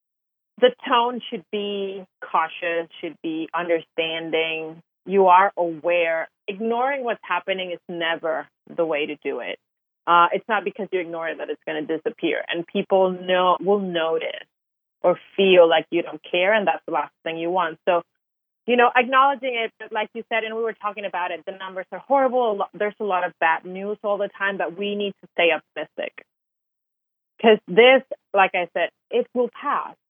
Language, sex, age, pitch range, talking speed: English, female, 30-49, 170-210 Hz, 185 wpm